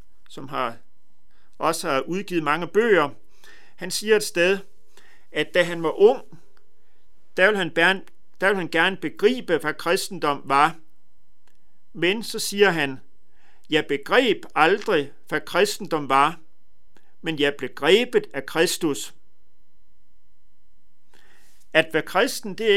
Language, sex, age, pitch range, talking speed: Danish, male, 50-69, 150-195 Hz, 125 wpm